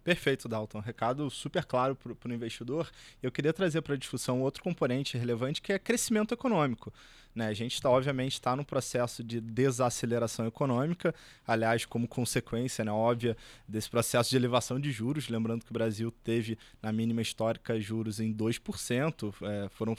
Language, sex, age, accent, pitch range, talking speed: Portuguese, male, 20-39, Brazilian, 120-170 Hz, 170 wpm